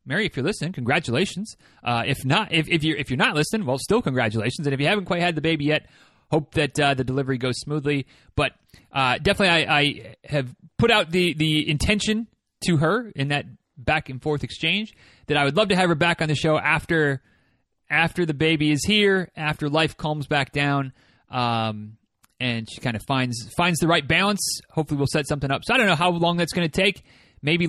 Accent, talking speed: American, 220 wpm